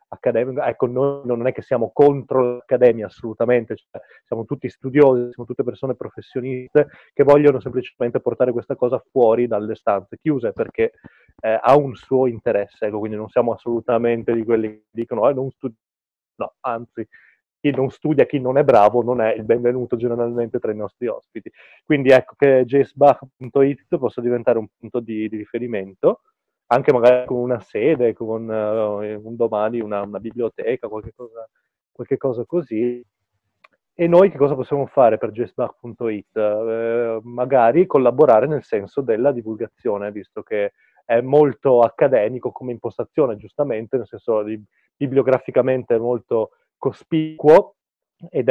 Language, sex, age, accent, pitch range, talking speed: Italian, male, 30-49, native, 115-135 Hz, 150 wpm